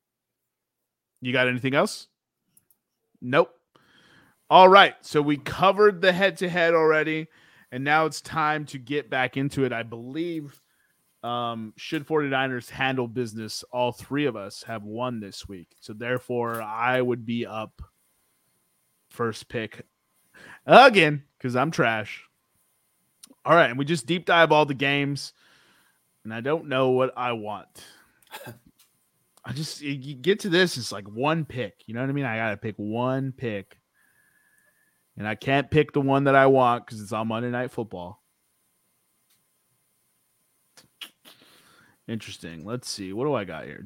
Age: 30-49